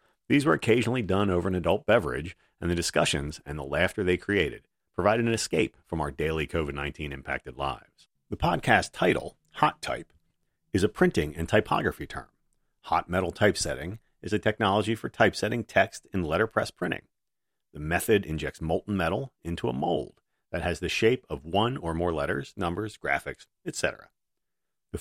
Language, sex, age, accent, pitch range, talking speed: English, male, 40-59, American, 80-105 Hz, 165 wpm